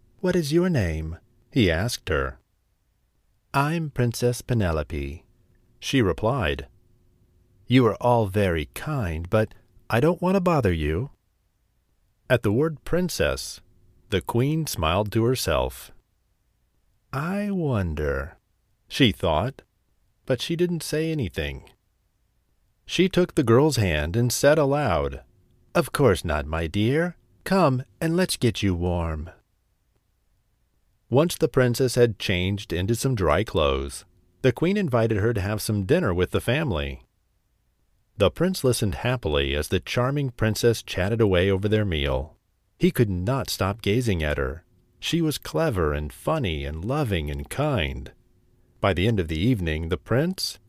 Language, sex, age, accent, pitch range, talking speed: English, male, 40-59, American, 90-135 Hz, 140 wpm